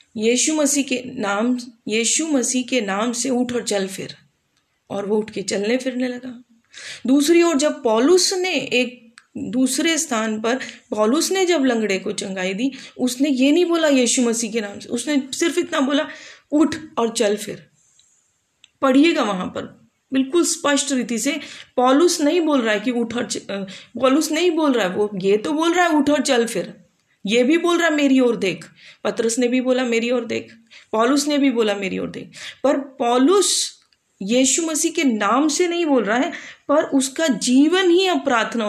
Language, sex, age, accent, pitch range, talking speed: English, female, 30-49, Indian, 230-290 Hz, 165 wpm